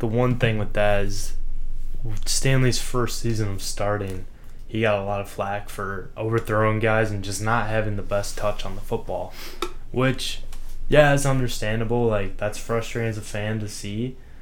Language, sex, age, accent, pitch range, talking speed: English, male, 10-29, American, 100-115 Hz, 175 wpm